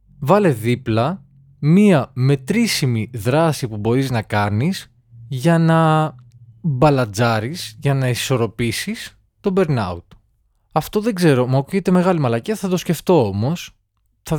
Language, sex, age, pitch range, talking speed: Greek, male, 20-39, 110-170 Hz, 120 wpm